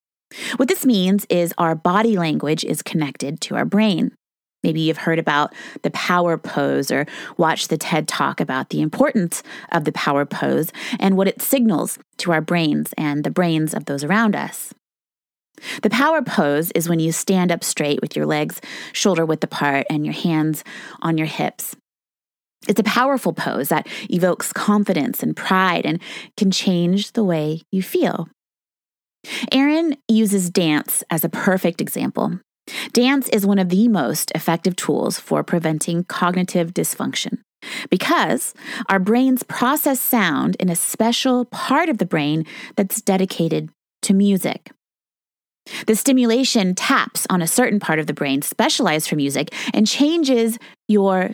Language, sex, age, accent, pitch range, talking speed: English, female, 20-39, American, 165-230 Hz, 155 wpm